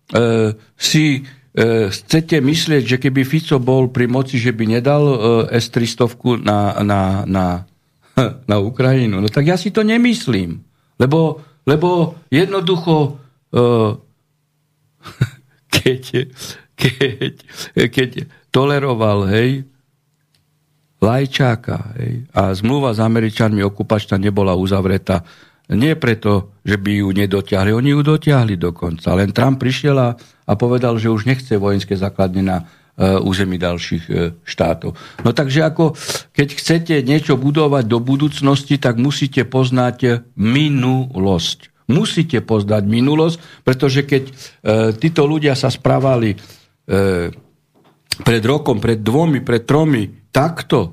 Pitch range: 110-145 Hz